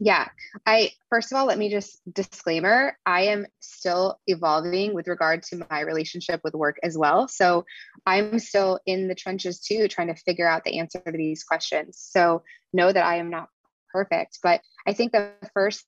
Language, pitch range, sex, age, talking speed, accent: English, 170-195 Hz, female, 20-39, 190 wpm, American